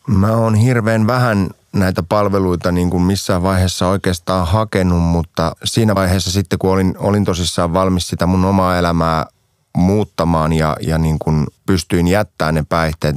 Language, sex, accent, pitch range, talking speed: Finnish, male, native, 80-95 Hz, 150 wpm